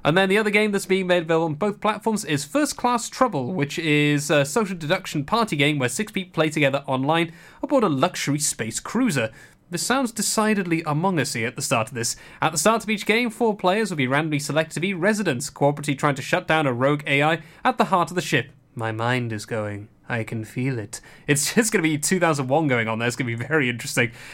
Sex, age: male, 30-49